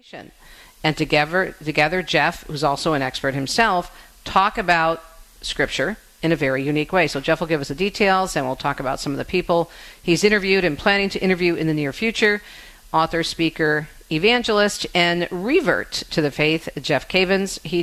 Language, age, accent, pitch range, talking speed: English, 50-69, American, 155-195 Hz, 180 wpm